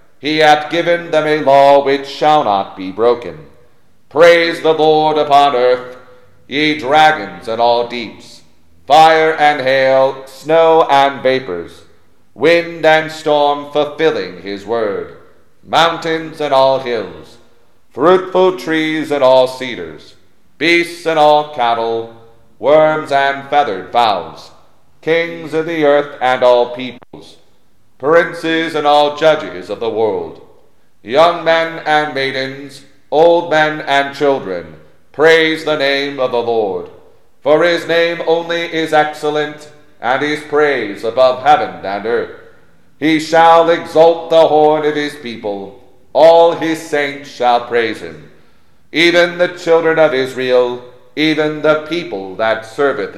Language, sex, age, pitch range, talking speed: English, male, 40-59, 125-160 Hz, 130 wpm